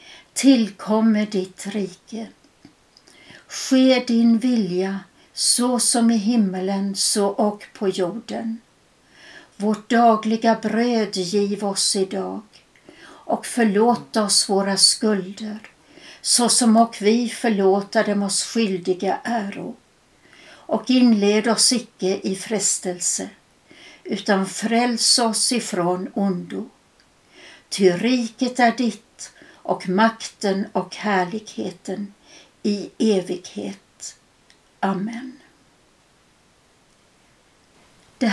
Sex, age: female, 60-79